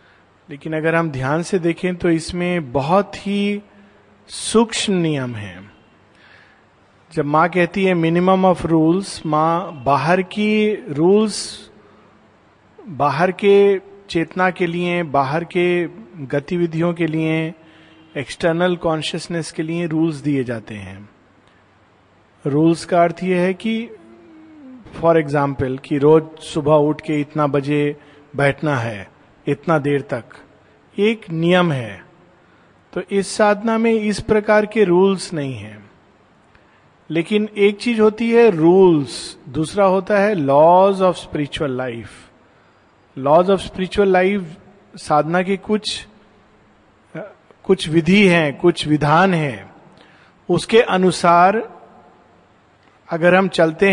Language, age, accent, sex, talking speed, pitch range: Hindi, 40-59, native, male, 120 wpm, 145-190 Hz